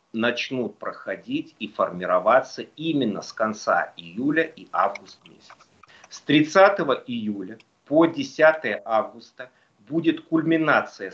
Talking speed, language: 100 wpm, Russian